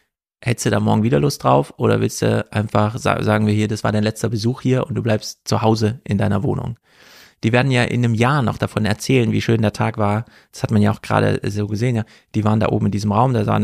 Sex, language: male, German